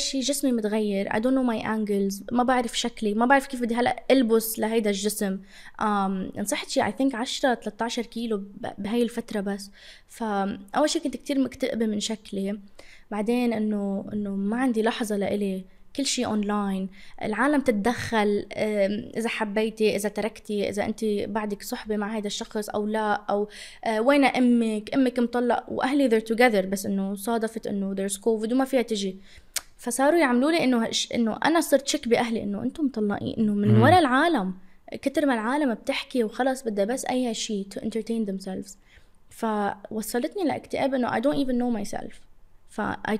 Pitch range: 205-250 Hz